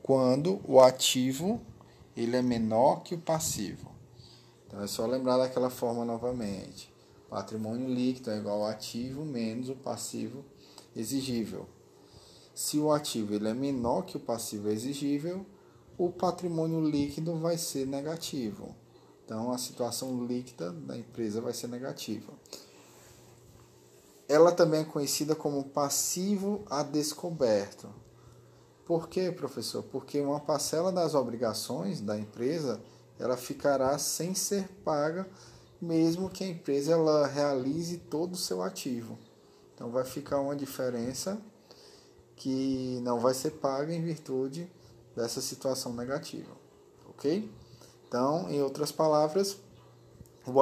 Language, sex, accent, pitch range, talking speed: Portuguese, male, Brazilian, 120-155 Hz, 120 wpm